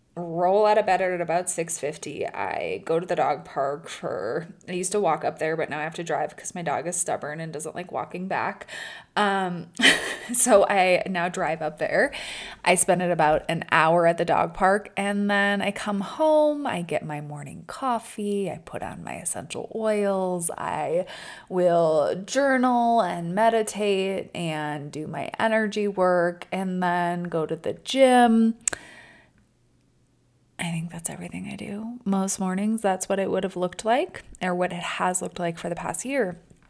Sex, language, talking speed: female, English, 180 wpm